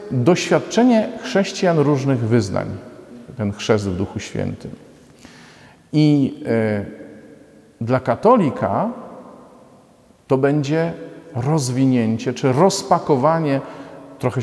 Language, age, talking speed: Polish, 40-59, 75 wpm